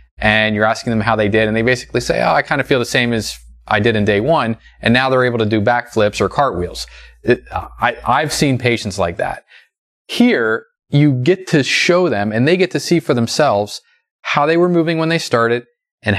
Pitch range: 110-140 Hz